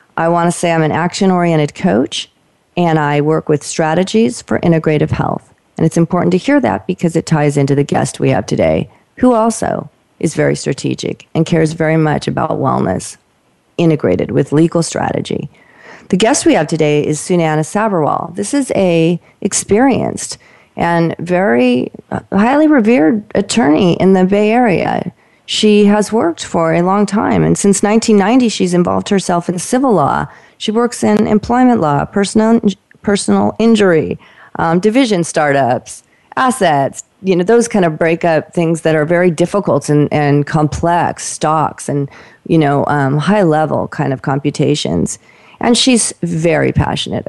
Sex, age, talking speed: female, 40-59, 155 wpm